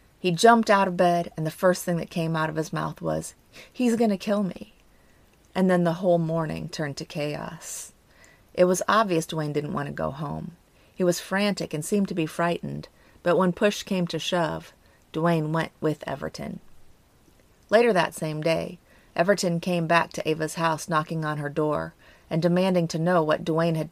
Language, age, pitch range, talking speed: English, 30-49, 155-190 Hz, 195 wpm